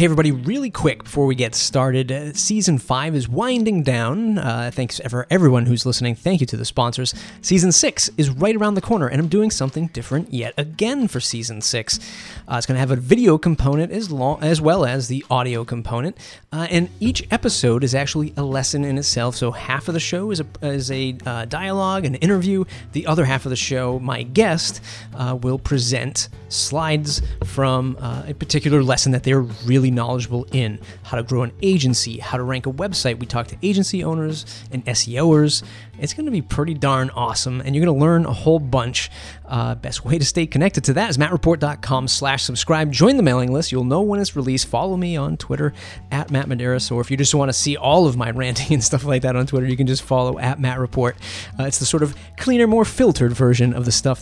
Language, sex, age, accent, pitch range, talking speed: English, male, 30-49, American, 125-160 Hz, 220 wpm